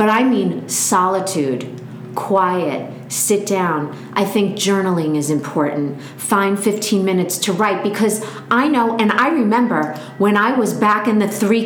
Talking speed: 155 wpm